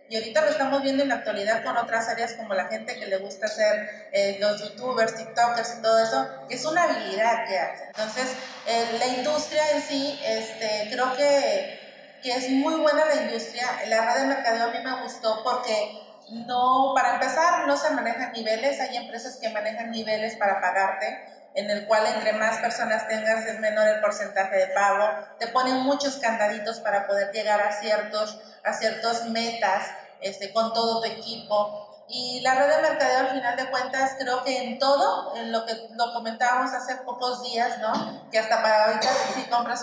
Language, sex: Spanish, female